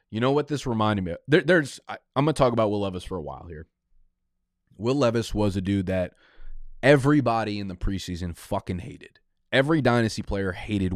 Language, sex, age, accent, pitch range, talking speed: English, male, 20-39, American, 95-120 Hz, 185 wpm